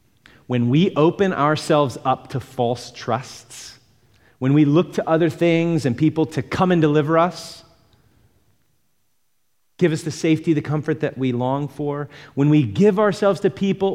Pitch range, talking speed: 100-135 Hz, 160 wpm